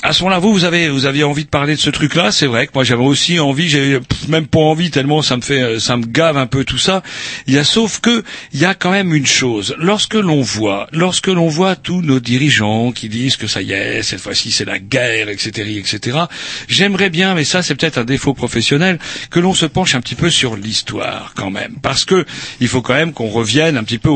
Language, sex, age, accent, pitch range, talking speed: French, male, 60-79, French, 130-170 Hz, 245 wpm